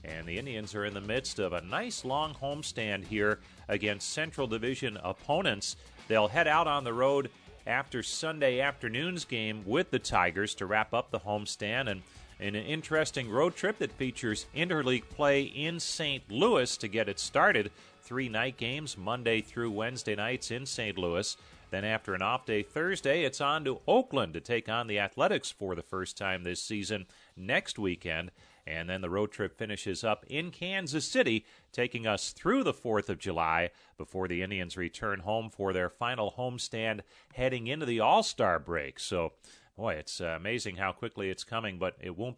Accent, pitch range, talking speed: American, 95-125 Hz, 180 wpm